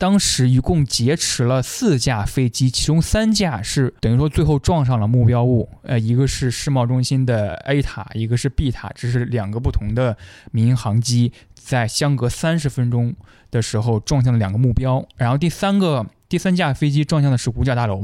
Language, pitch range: Chinese, 115-145 Hz